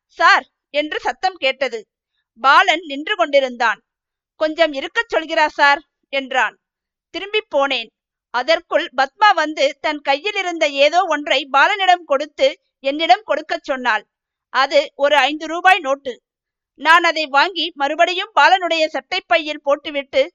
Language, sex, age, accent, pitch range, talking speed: Tamil, female, 50-69, native, 275-345 Hz, 120 wpm